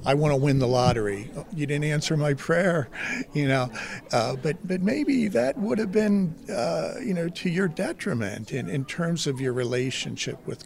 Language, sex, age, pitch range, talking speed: English, male, 50-69, 120-155 Hz, 195 wpm